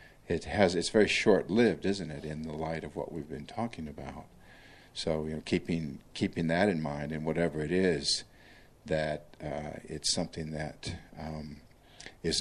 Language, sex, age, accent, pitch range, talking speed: English, male, 50-69, American, 75-85 Hz, 175 wpm